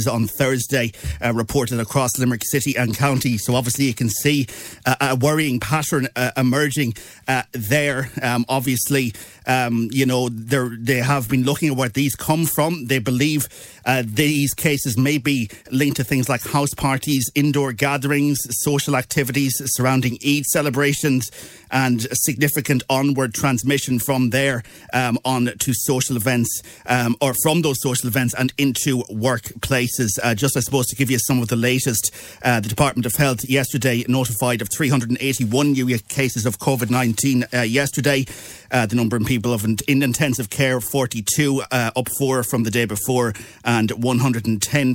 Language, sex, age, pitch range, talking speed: English, male, 30-49, 120-140 Hz, 160 wpm